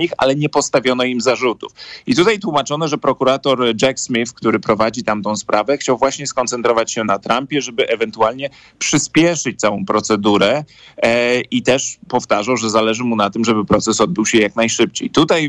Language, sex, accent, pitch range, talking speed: Polish, male, native, 115-135 Hz, 165 wpm